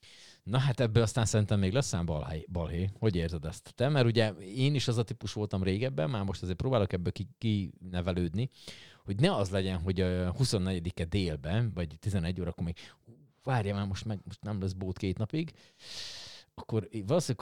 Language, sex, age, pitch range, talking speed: Hungarian, male, 30-49, 95-120 Hz, 185 wpm